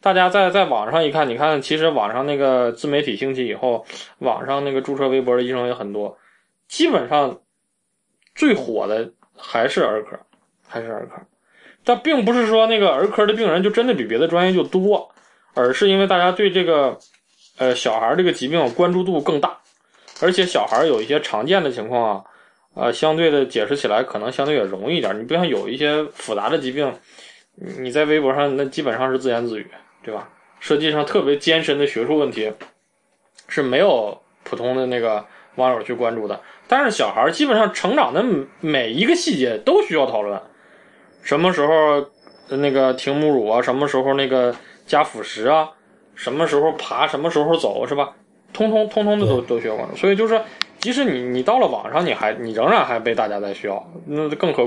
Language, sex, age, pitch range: Chinese, male, 20-39, 130-185 Hz